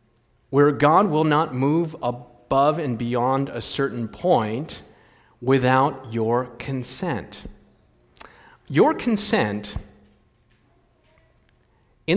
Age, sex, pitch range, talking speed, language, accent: 50-69, male, 115-150 Hz, 85 wpm, English, American